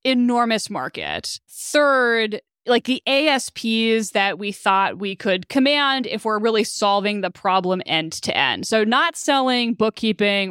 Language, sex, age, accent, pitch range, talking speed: English, female, 20-39, American, 190-240 Hz, 145 wpm